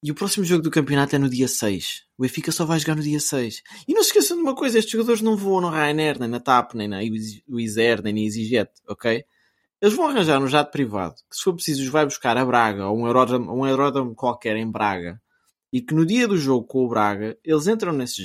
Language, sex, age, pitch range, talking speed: Portuguese, male, 20-39, 115-165 Hz, 250 wpm